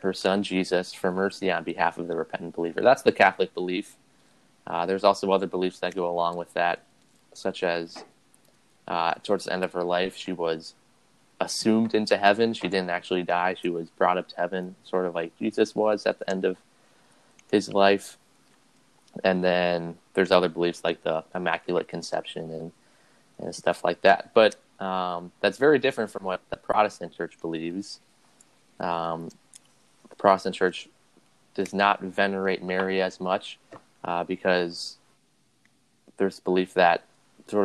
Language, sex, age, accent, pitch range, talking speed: English, male, 20-39, American, 85-95 Hz, 160 wpm